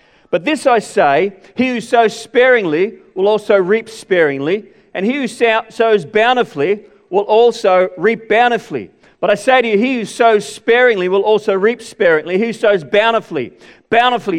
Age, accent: 40-59, Australian